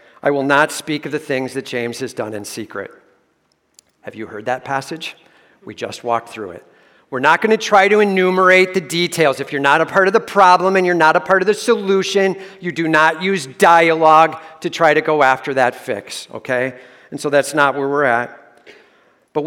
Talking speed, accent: 215 wpm, American